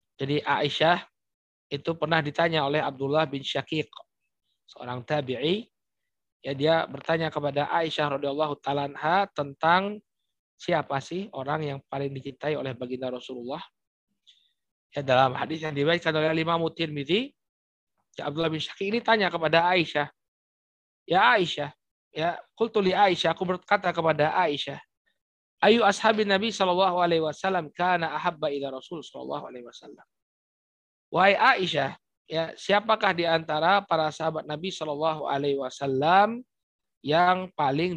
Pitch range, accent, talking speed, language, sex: 145-190 Hz, native, 120 wpm, Indonesian, male